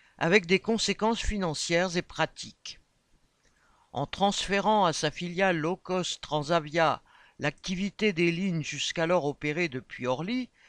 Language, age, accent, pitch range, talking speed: French, 60-79, French, 150-195 Hz, 120 wpm